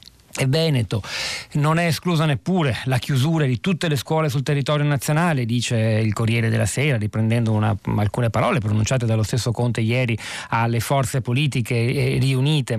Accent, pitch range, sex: native, 120-145 Hz, male